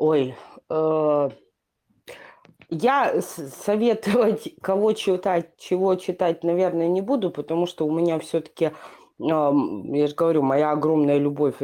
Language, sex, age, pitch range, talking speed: Russian, female, 20-39, 150-205 Hz, 115 wpm